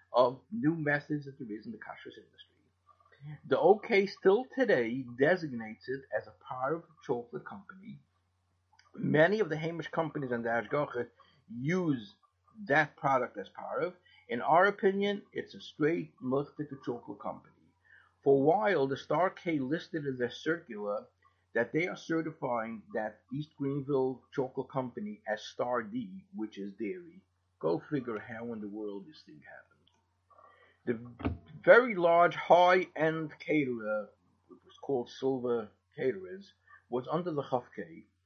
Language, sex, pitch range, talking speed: English, male, 120-165 Hz, 145 wpm